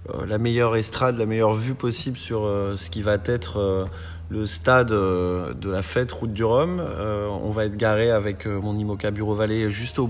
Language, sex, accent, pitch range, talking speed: French, male, French, 105-130 Hz, 220 wpm